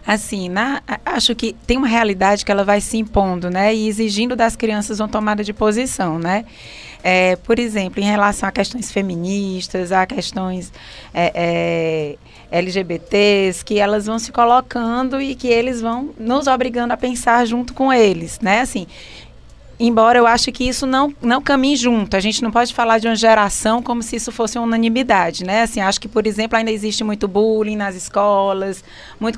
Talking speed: 170 wpm